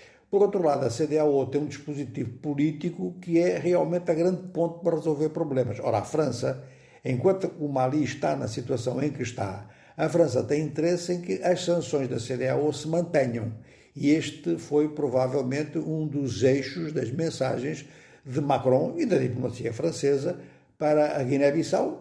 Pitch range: 130-165 Hz